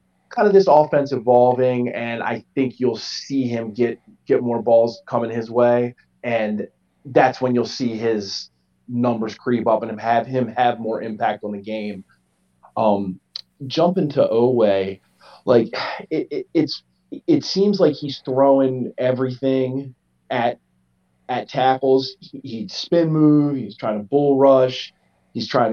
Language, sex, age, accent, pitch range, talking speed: English, male, 30-49, American, 115-140 Hz, 150 wpm